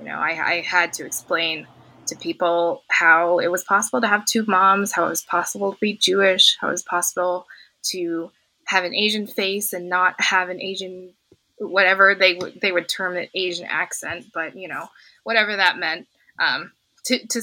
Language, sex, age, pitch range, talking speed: English, female, 20-39, 175-210 Hz, 190 wpm